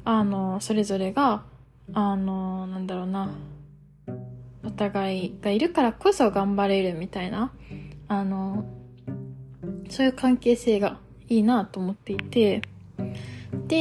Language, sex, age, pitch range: Japanese, female, 20-39, 195-240 Hz